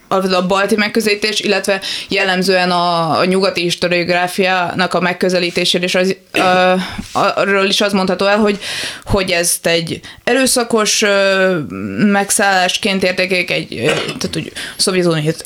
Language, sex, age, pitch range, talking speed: Hungarian, female, 20-39, 175-205 Hz, 115 wpm